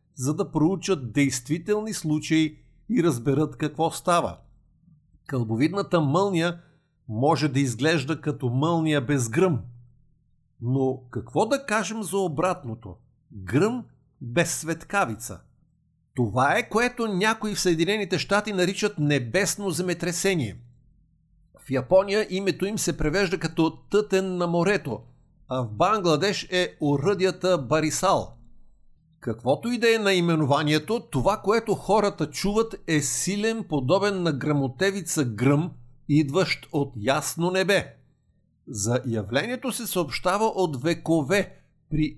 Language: Bulgarian